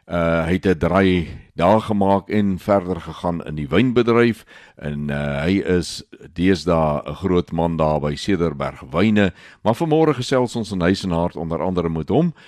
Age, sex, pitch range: 60-79, male, 80-105 Hz